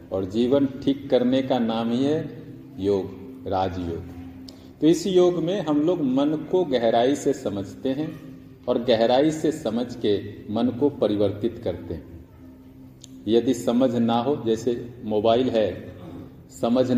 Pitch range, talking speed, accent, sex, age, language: 110-135 Hz, 140 wpm, native, male, 40-59, Hindi